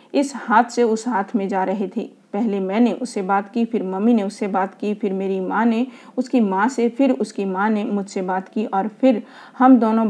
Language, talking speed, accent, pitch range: Hindi, 220 wpm, native, 195-245 Hz